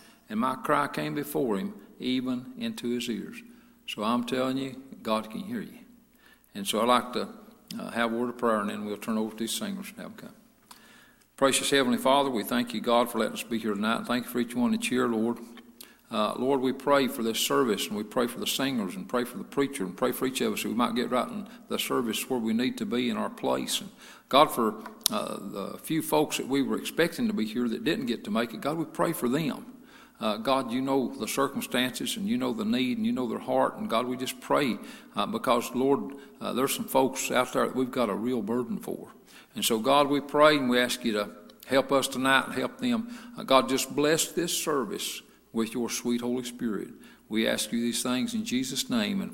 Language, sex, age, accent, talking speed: English, male, 50-69, American, 245 wpm